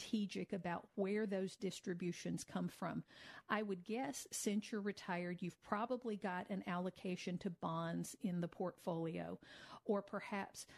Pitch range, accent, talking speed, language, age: 185-215 Hz, American, 140 wpm, English, 50-69